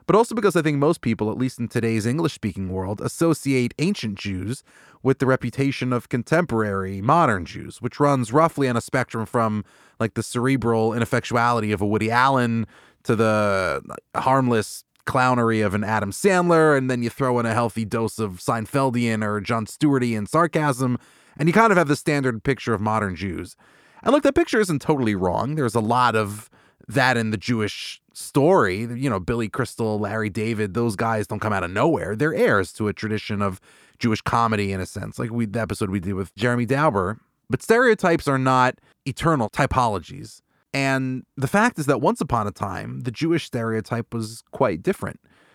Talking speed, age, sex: 185 wpm, 30-49, male